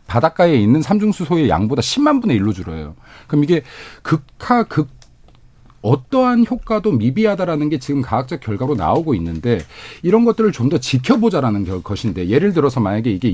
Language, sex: Korean, male